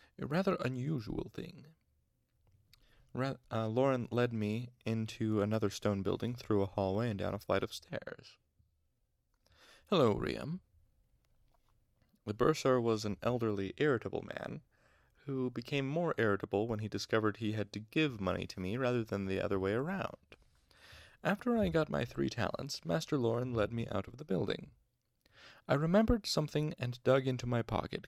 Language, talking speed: English, 155 wpm